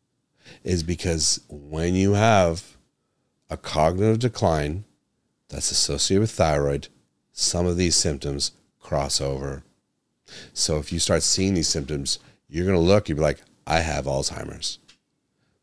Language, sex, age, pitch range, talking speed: English, male, 40-59, 75-90 Hz, 135 wpm